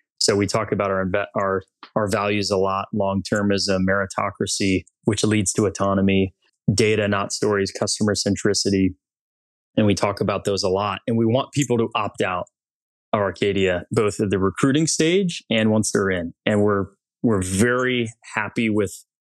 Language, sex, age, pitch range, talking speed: English, male, 20-39, 100-120 Hz, 160 wpm